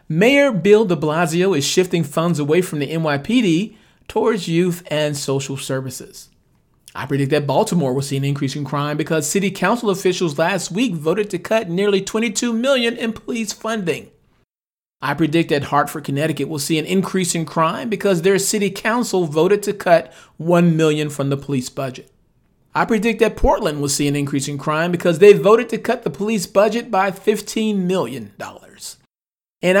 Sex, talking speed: male, 175 wpm